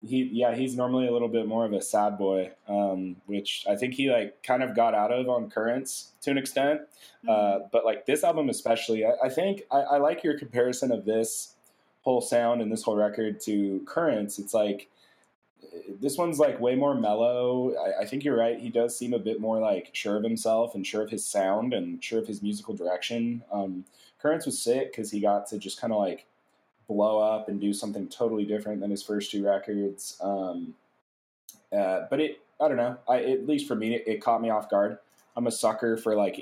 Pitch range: 100-125 Hz